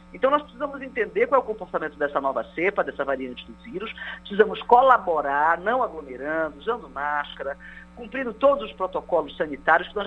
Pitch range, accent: 155-250 Hz, Brazilian